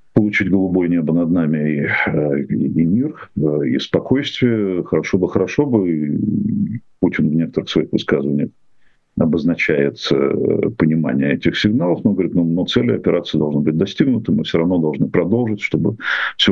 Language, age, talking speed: Russian, 50-69, 150 wpm